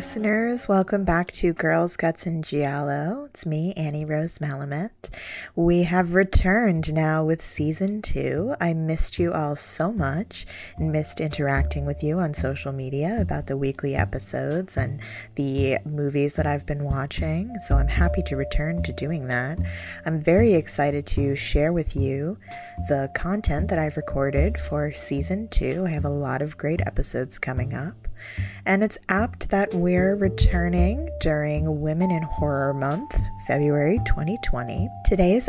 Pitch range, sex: 110-170 Hz, female